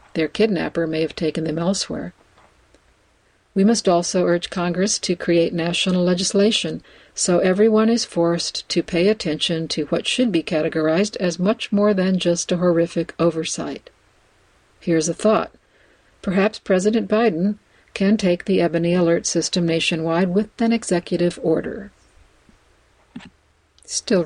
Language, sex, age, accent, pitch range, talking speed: English, female, 60-79, American, 170-215 Hz, 135 wpm